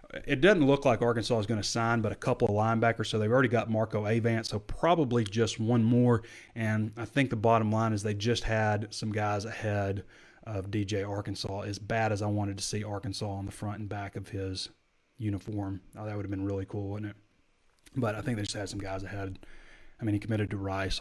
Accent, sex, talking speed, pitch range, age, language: American, male, 230 wpm, 100-120 Hz, 30-49, English